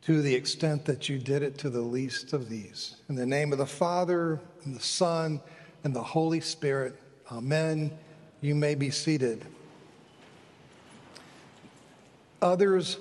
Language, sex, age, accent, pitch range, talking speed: English, male, 50-69, American, 140-175 Hz, 145 wpm